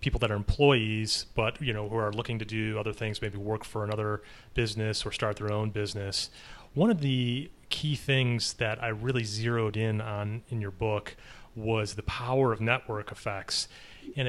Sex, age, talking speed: male, 30-49, 190 wpm